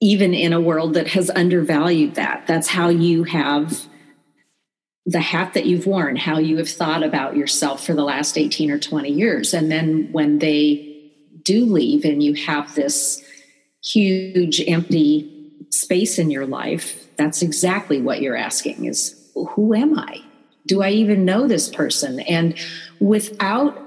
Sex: female